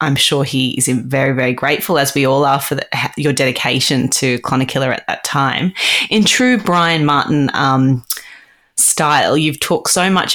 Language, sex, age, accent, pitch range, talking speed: English, female, 20-39, Australian, 140-160 Hz, 170 wpm